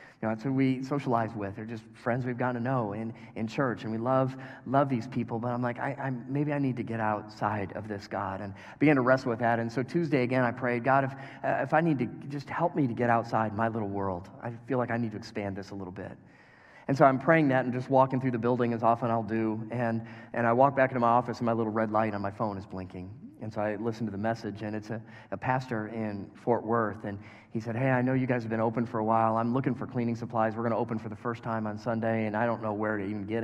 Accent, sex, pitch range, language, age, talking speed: American, male, 110-130 Hz, English, 30-49, 285 wpm